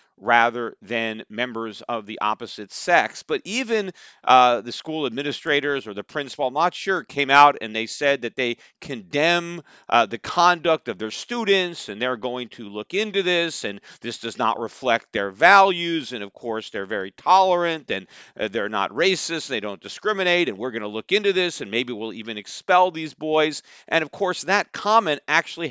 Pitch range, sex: 125-180 Hz, male